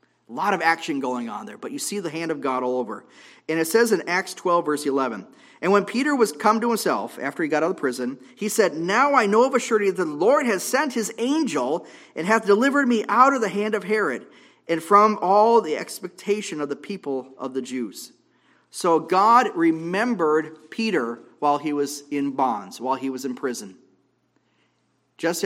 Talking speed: 205 wpm